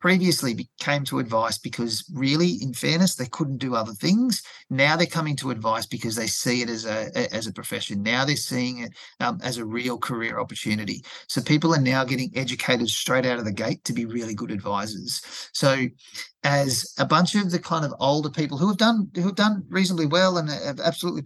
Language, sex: English, male